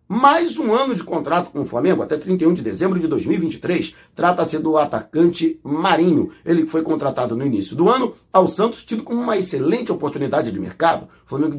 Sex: male